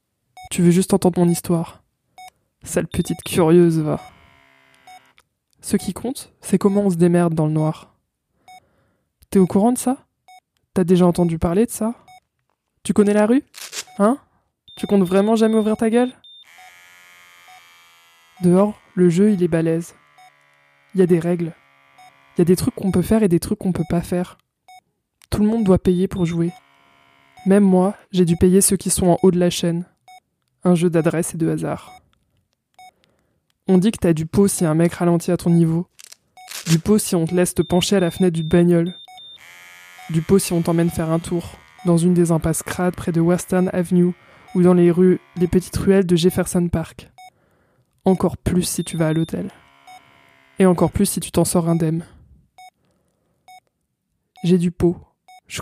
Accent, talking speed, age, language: French, 180 wpm, 20-39, French